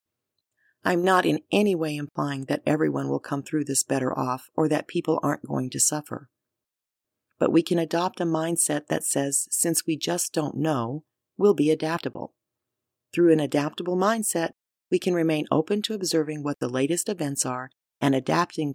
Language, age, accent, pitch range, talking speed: English, 40-59, American, 130-165 Hz, 175 wpm